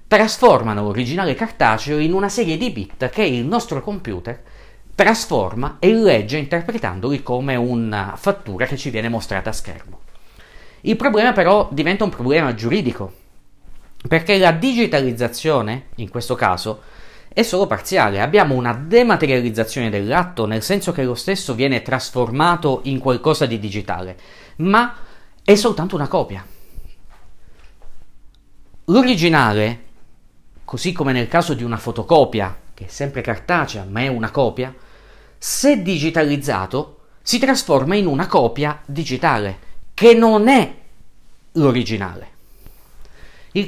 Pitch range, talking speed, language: 110-175 Hz, 125 wpm, Italian